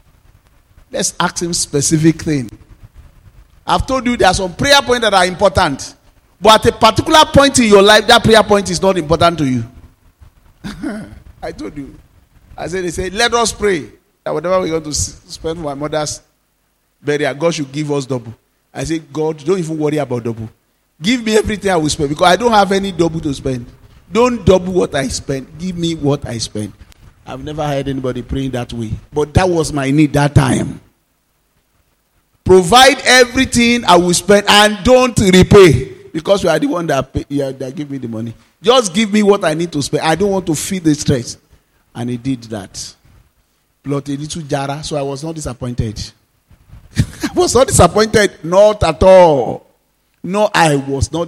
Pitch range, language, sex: 130-190 Hz, English, male